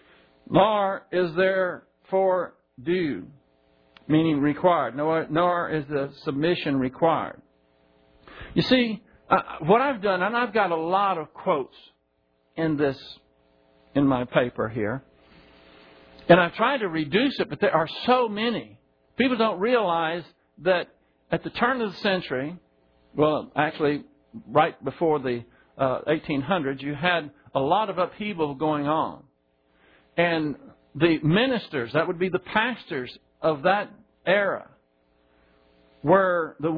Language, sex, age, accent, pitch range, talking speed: English, male, 60-79, American, 130-190 Hz, 130 wpm